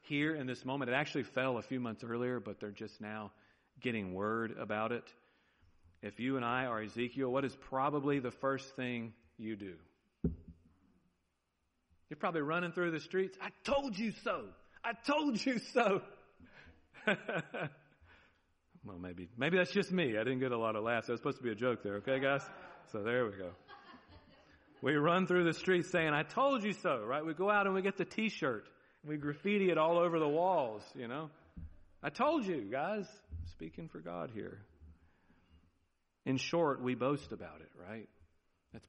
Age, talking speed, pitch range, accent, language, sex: 40-59, 185 wpm, 100-145 Hz, American, English, male